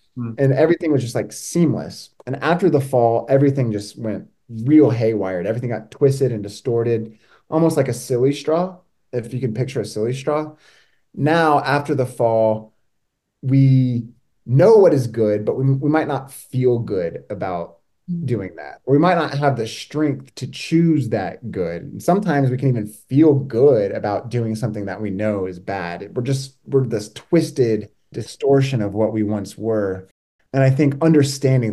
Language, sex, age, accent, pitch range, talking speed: English, male, 20-39, American, 105-135 Hz, 170 wpm